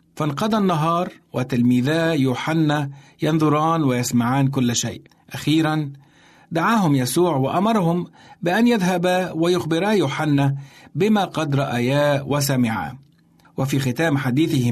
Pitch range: 130-165 Hz